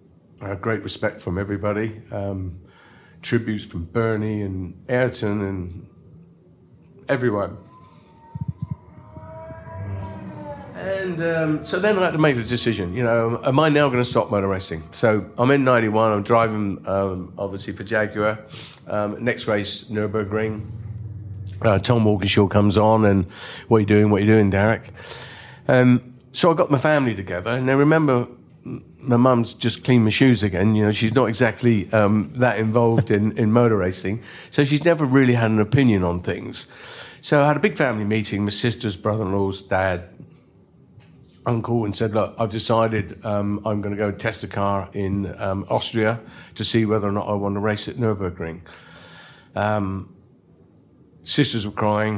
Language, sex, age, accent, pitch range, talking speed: English, male, 50-69, British, 100-120 Hz, 165 wpm